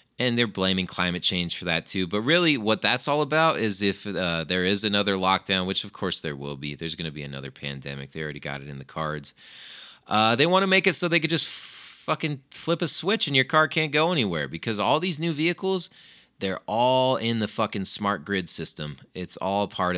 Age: 30-49